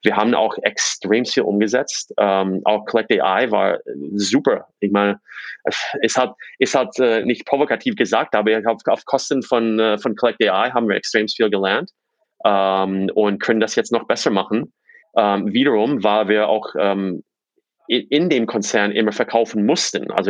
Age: 30-49